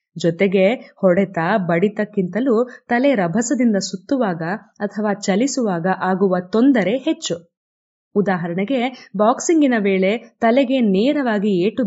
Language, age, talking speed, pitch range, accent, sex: English, 20-39, 85 wpm, 185-235 Hz, Indian, female